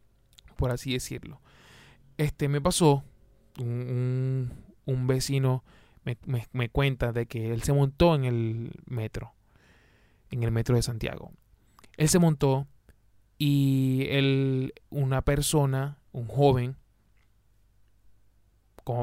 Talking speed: 110 wpm